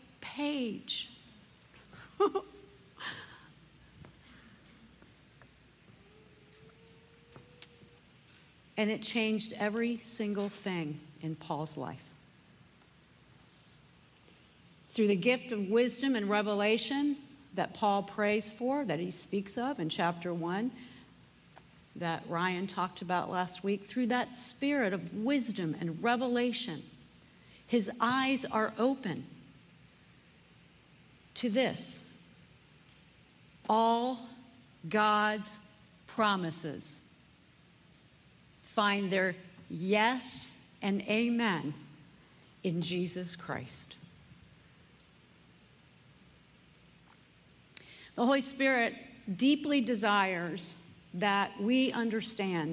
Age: 50-69